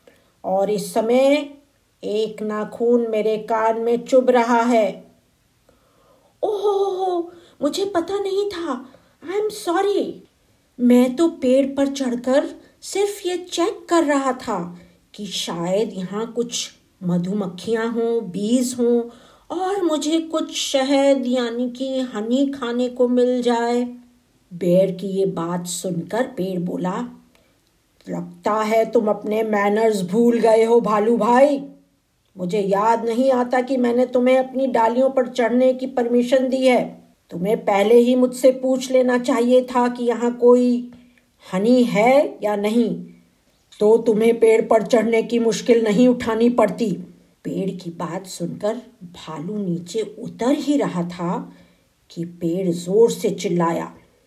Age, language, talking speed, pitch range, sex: 50-69, Hindi, 135 wpm, 210-260 Hz, female